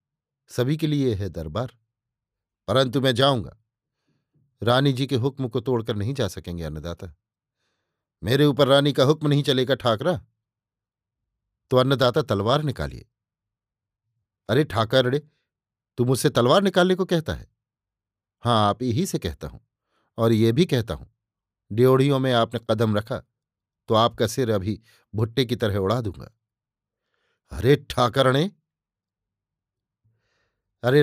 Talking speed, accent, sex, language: 130 wpm, native, male, Hindi